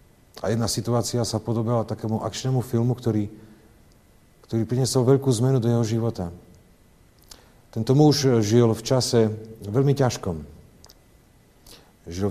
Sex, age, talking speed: male, 50-69, 115 wpm